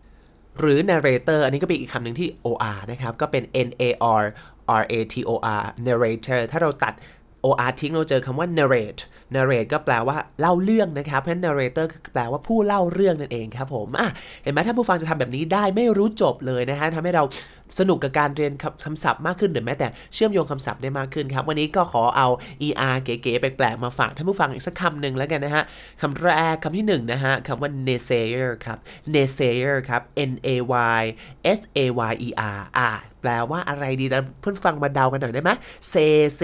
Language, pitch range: Thai, 125-170 Hz